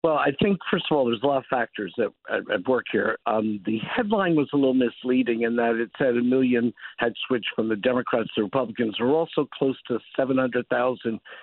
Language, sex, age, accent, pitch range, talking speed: English, male, 50-69, American, 120-145 Hz, 215 wpm